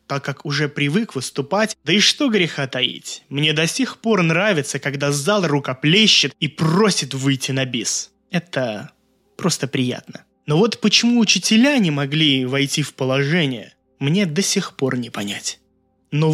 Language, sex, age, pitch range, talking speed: Russian, male, 20-39, 140-200 Hz, 150 wpm